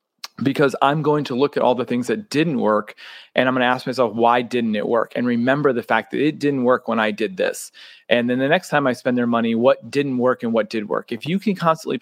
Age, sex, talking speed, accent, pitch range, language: 30-49, male, 270 wpm, American, 120-145 Hz, English